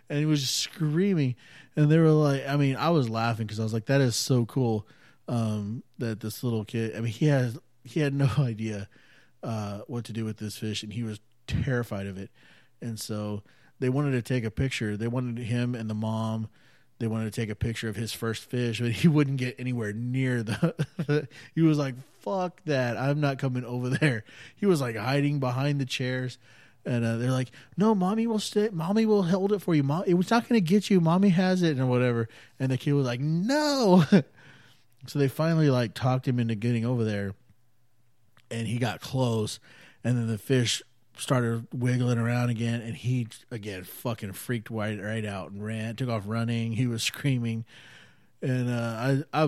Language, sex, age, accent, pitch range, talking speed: English, male, 30-49, American, 115-140 Hz, 210 wpm